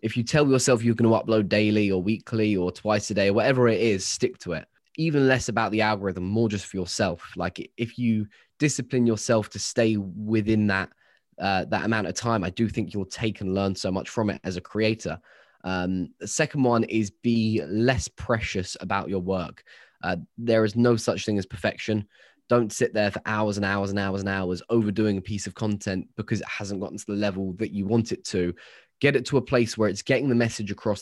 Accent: British